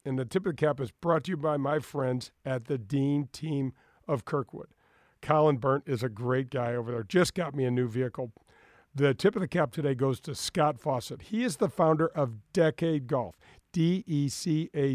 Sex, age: male, 50-69